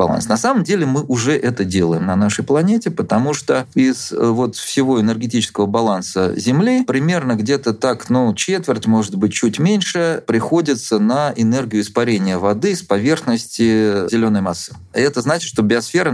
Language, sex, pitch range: Russian, male, 100-135 Hz